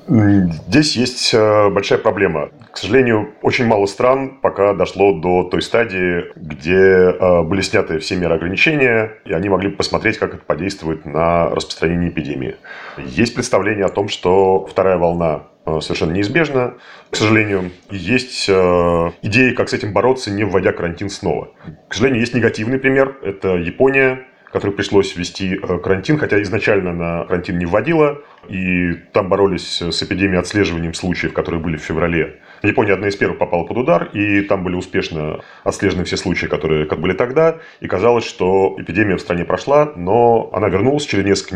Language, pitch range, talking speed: Russian, 85-110 Hz, 155 wpm